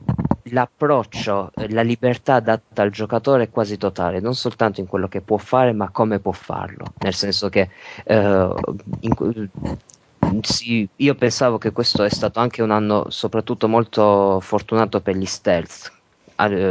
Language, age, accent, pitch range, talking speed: Italian, 20-39, native, 100-115 Hz, 145 wpm